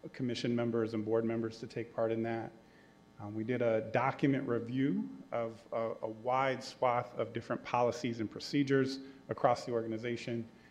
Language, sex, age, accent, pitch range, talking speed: English, male, 30-49, American, 110-135 Hz, 165 wpm